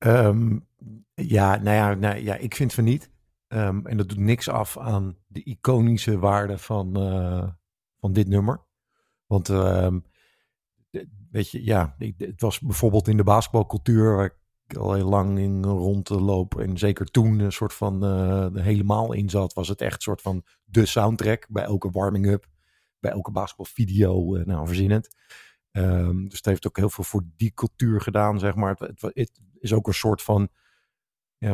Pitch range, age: 100-120 Hz, 50-69